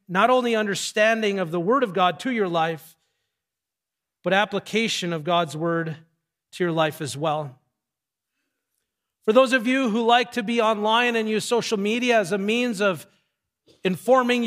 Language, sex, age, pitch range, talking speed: English, male, 40-59, 185-235 Hz, 160 wpm